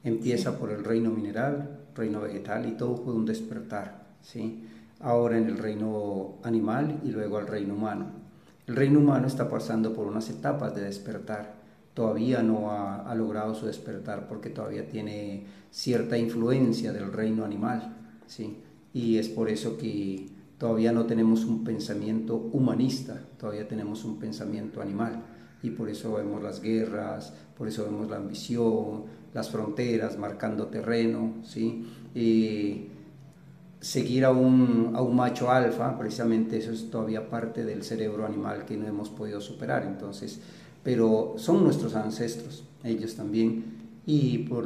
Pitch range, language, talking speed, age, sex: 105-120 Hz, Spanish, 150 wpm, 40-59, male